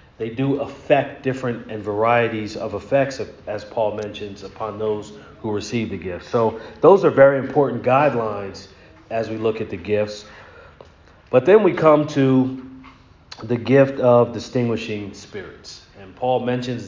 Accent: American